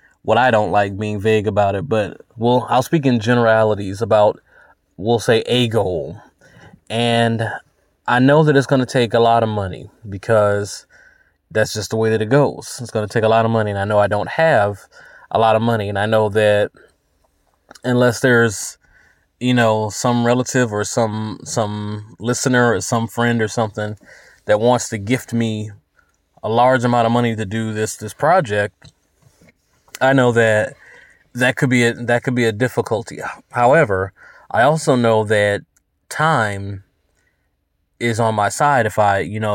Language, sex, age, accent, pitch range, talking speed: English, male, 20-39, American, 105-120 Hz, 180 wpm